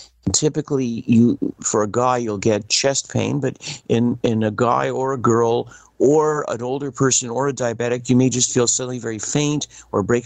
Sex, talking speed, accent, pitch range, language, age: male, 195 wpm, American, 115-140 Hz, English, 50-69